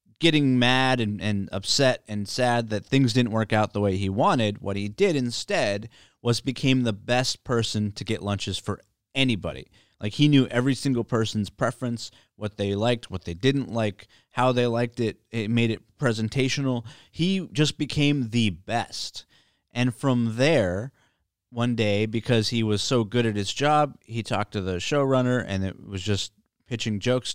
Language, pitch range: English, 105-135 Hz